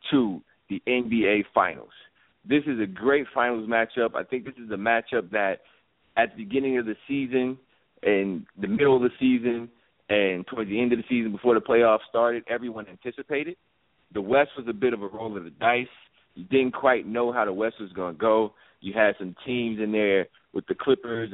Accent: American